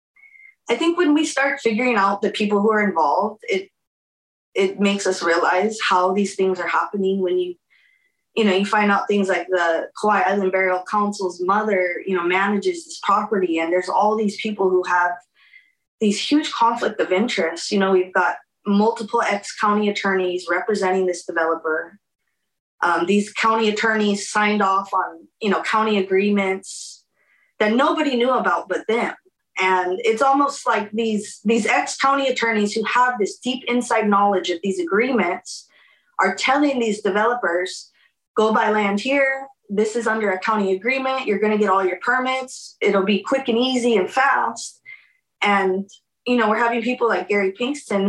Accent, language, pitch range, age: American, English, 190-245 Hz, 20-39